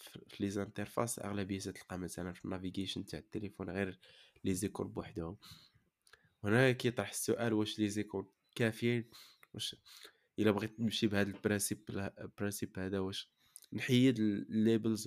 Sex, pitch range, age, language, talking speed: male, 100-120 Hz, 20-39, Arabic, 115 wpm